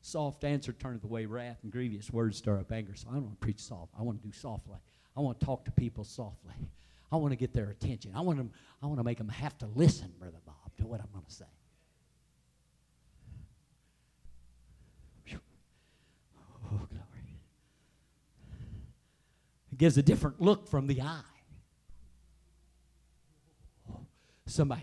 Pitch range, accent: 95-150 Hz, American